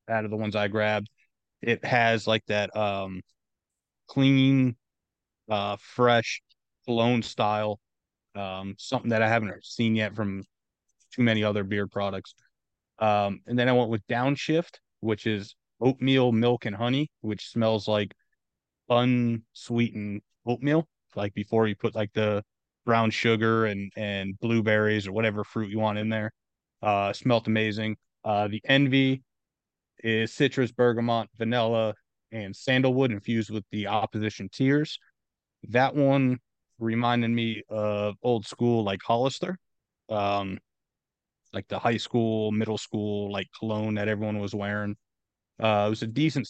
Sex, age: male, 30-49